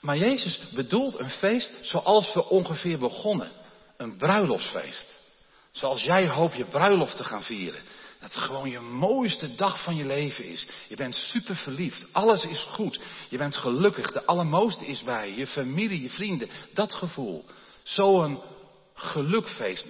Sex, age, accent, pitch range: male, 50-69, Dutch, 135-210 Hz